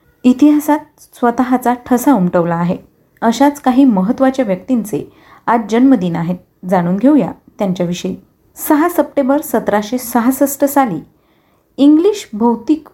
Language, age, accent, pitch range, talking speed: Marathi, 30-49, native, 200-280 Hz, 95 wpm